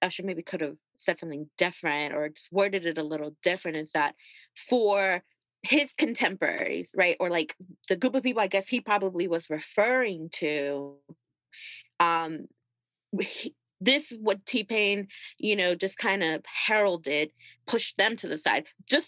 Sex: female